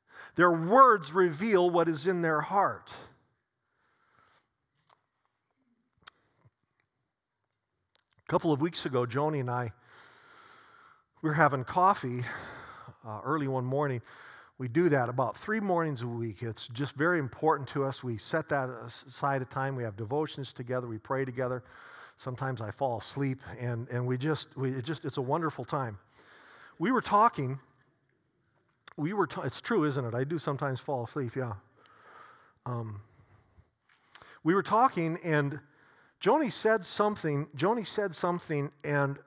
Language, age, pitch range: English, 50-69, 130-175 Hz